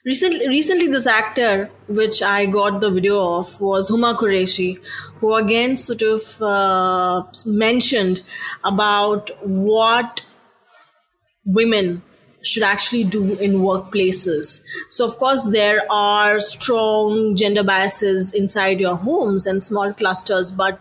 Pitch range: 195-230 Hz